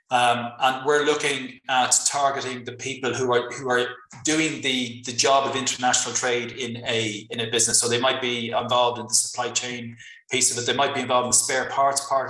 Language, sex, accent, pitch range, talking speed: English, male, Irish, 120-135 Hz, 220 wpm